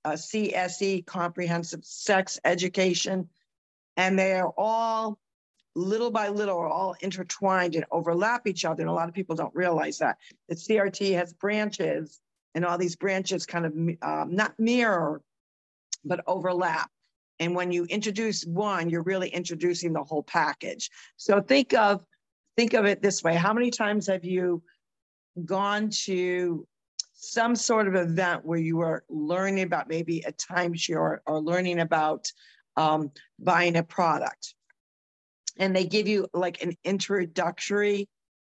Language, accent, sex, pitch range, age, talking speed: English, American, female, 170-205 Hz, 50-69, 150 wpm